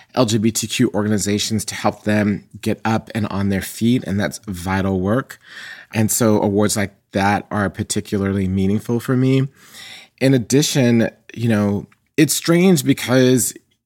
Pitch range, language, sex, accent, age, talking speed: 100-125 Hz, English, male, American, 30-49, 140 wpm